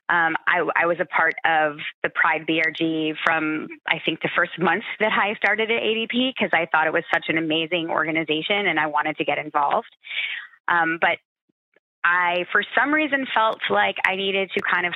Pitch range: 160-200 Hz